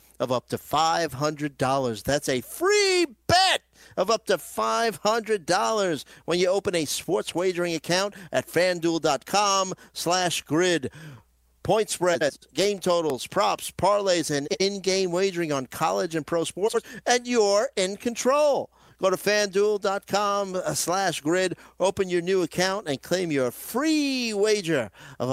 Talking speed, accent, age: 135 wpm, American, 50-69